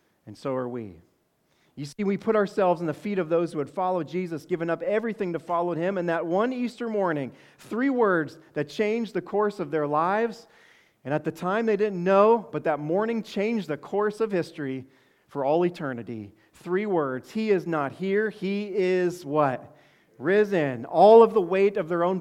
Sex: male